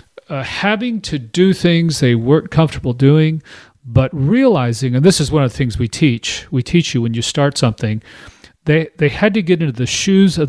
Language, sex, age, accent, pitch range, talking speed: English, male, 40-59, American, 120-155 Hz, 205 wpm